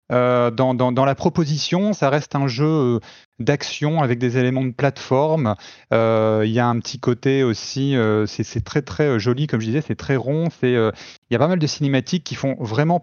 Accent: French